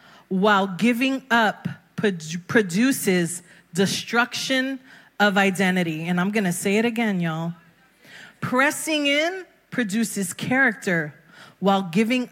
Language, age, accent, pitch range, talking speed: English, 30-49, American, 195-245 Hz, 100 wpm